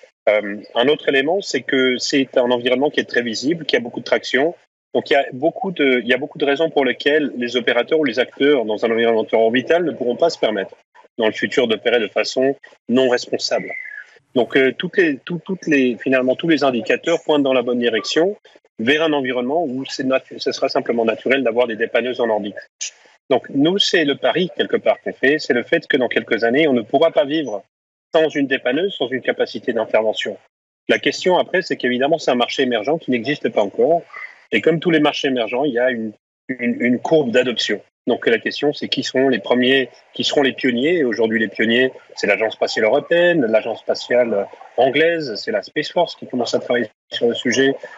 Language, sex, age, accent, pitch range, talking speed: French, male, 30-49, French, 120-155 Hz, 215 wpm